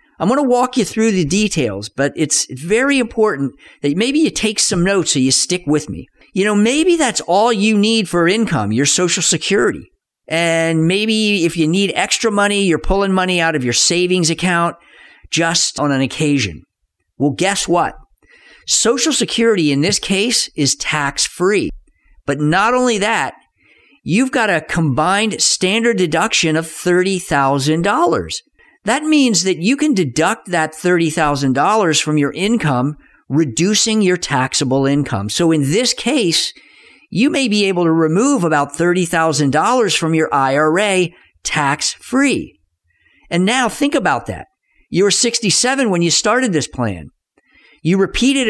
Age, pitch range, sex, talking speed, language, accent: 50-69, 155-220 Hz, male, 150 wpm, English, American